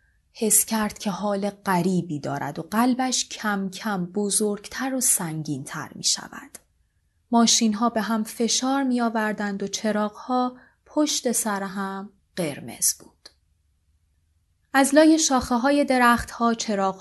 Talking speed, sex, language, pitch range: 125 wpm, female, Persian, 190-250 Hz